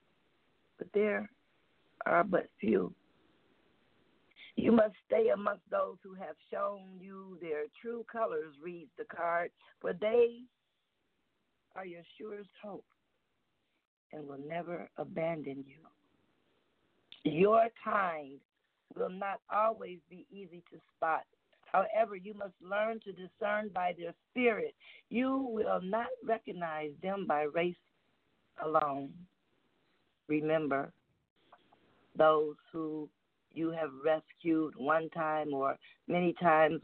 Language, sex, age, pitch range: English, female, 50-69, 155-210 Hz